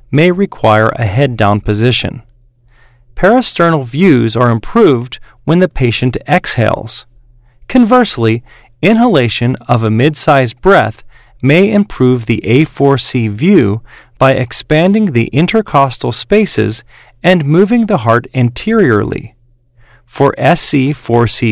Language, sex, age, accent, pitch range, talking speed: English, male, 40-59, American, 120-175 Hz, 105 wpm